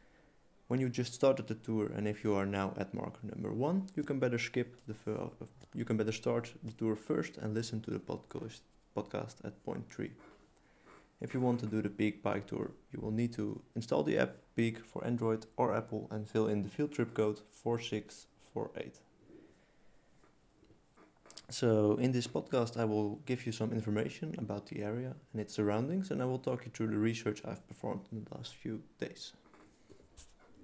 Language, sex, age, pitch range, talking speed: English, male, 20-39, 110-125 Hz, 195 wpm